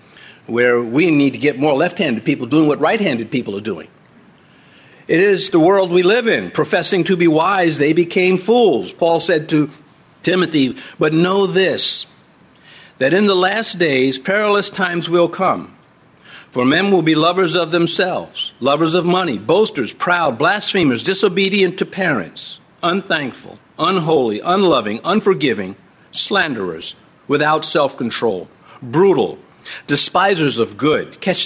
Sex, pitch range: male, 155-200 Hz